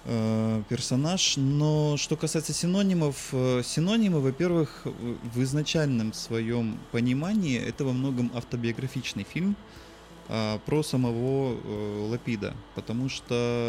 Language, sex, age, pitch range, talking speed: Russian, male, 20-39, 110-140 Hz, 90 wpm